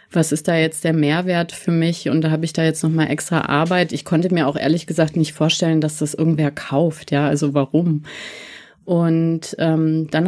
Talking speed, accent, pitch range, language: 205 wpm, German, 155-185 Hz, German